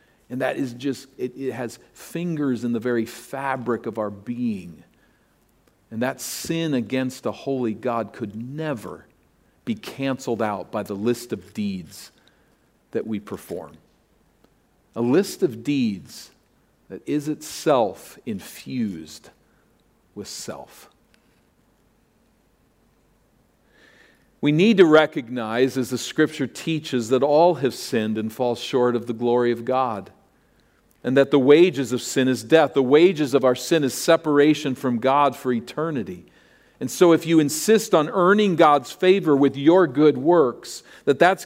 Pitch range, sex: 125-165 Hz, male